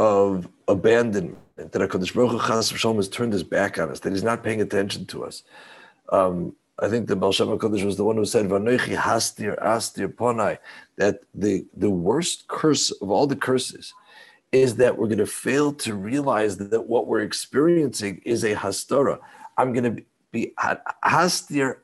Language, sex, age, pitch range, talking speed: English, male, 50-69, 125-165 Hz, 175 wpm